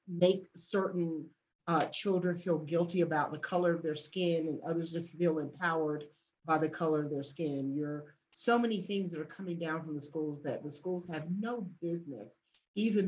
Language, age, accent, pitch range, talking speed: English, 40-59, American, 150-180 Hz, 185 wpm